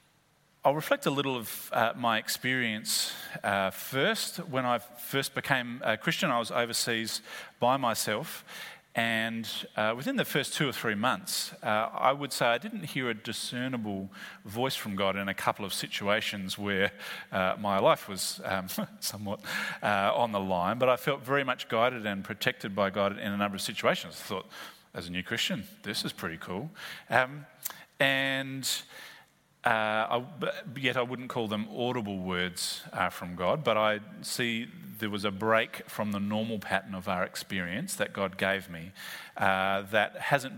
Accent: Australian